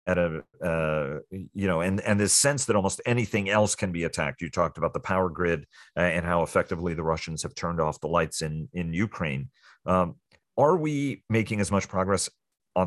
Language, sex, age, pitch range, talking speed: English, male, 40-59, 85-105 Hz, 200 wpm